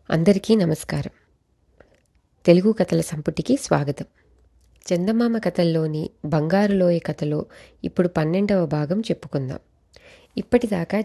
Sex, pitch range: female, 160-205 Hz